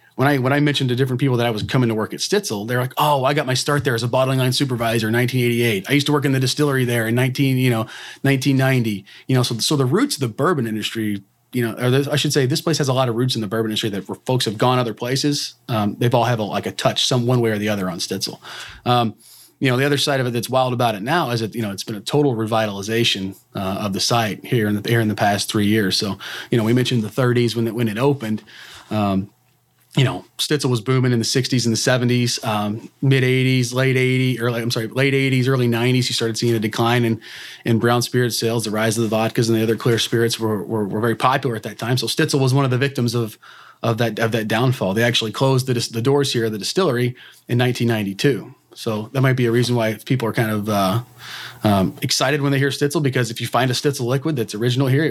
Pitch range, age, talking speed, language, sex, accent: 110-130 Hz, 30-49, 265 wpm, English, male, American